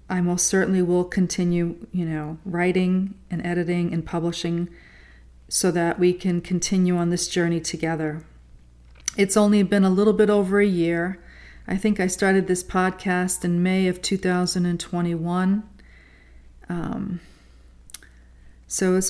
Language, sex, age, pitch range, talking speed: English, female, 40-59, 170-195 Hz, 135 wpm